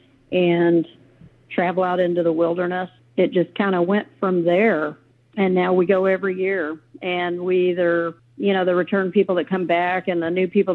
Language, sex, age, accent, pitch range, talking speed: English, female, 50-69, American, 165-185 Hz, 190 wpm